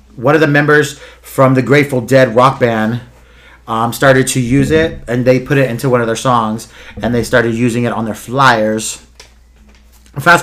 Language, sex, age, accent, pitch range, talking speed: English, male, 30-49, American, 115-135 Hz, 190 wpm